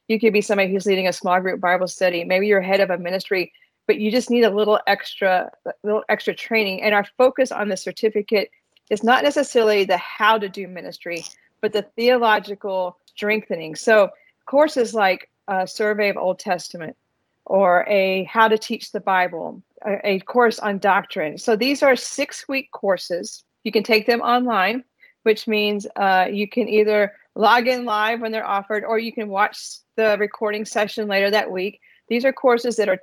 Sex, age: female, 40-59